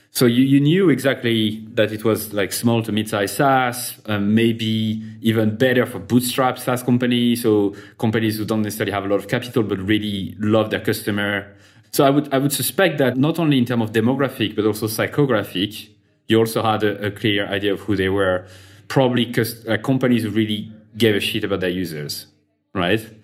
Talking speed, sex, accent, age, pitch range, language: 195 wpm, male, French, 30-49, 100-125 Hz, English